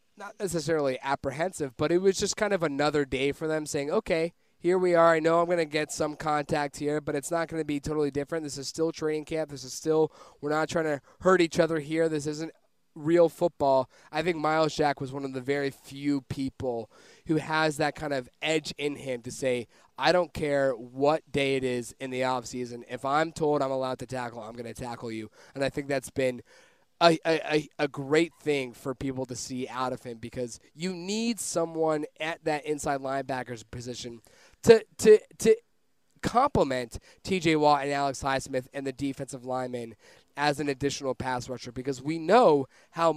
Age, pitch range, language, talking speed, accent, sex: 20-39, 130-160 Hz, English, 205 wpm, American, male